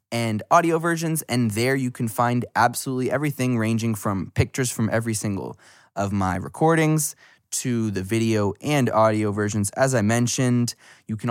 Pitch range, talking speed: 100-125 Hz, 160 wpm